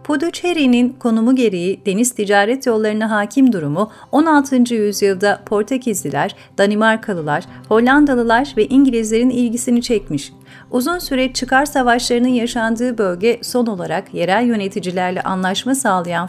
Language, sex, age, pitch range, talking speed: Turkish, female, 40-59, 200-255 Hz, 105 wpm